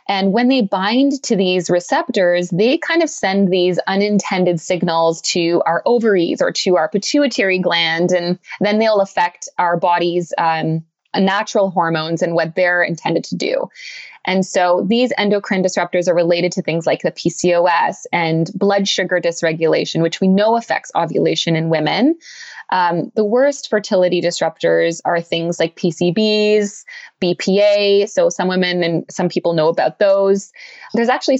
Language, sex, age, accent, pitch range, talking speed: English, female, 20-39, American, 175-215 Hz, 155 wpm